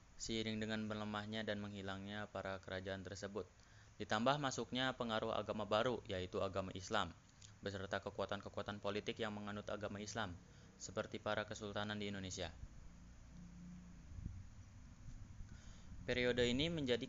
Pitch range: 95-110 Hz